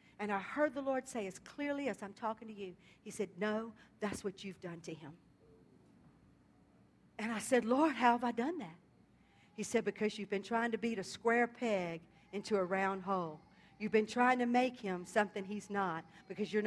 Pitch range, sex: 190-230 Hz, female